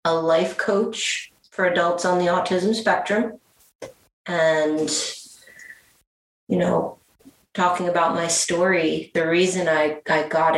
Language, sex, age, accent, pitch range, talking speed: English, female, 30-49, American, 155-190 Hz, 120 wpm